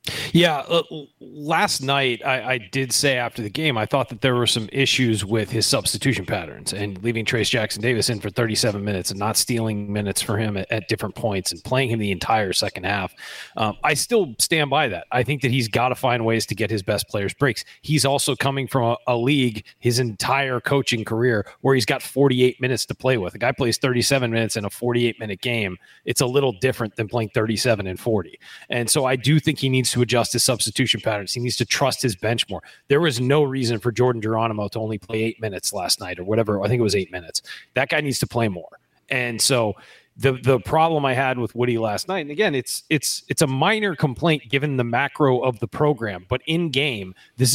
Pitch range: 110-135 Hz